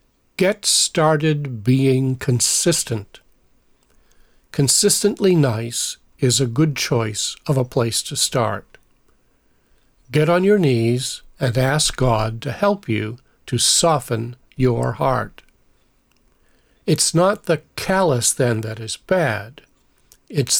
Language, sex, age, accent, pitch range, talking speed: English, male, 50-69, American, 120-155 Hz, 110 wpm